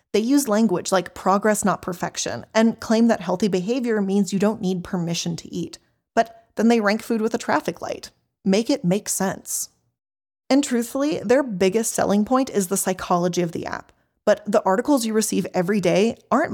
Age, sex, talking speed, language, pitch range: 20-39, female, 190 wpm, English, 175-240 Hz